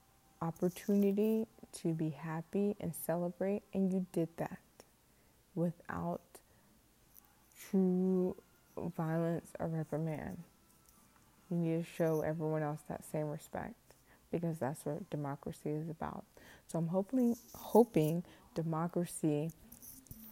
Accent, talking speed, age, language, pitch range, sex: American, 105 wpm, 20-39, English, 155-175 Hz, female